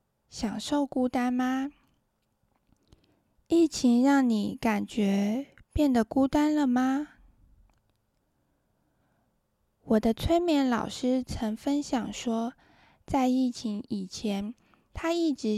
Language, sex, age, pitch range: Chinese, female, 10-29, 220-275 Hz